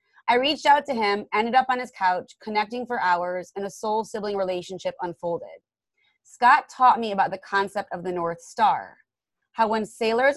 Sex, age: female, 30-49